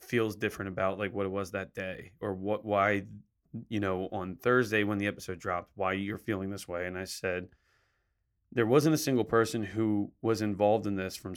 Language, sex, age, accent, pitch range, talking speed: English, male, 30-49, American, 95-110 Hz, 205 wpm